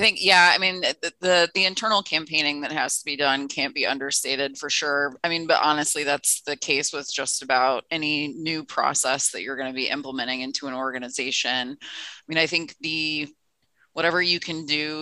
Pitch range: 135-155 Hz